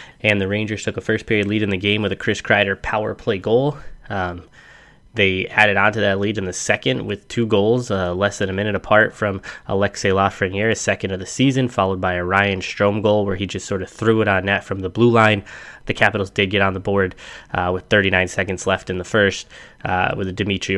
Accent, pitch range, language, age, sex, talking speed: American, 95-105 Hz, English, 10-29, male, 235 wpm